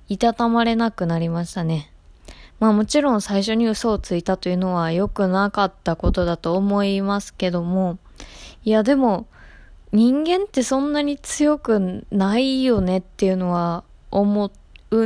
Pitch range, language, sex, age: 185-235 Hz, Japanese, female, 20-39